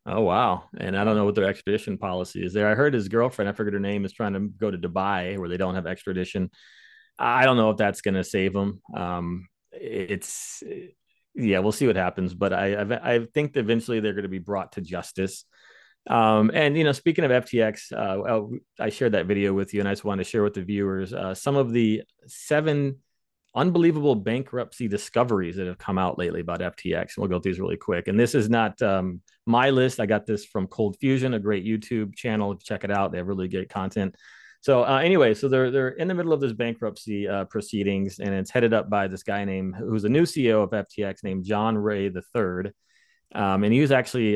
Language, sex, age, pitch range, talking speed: English, male, 30-49, 95-115 Hz, 220 wpm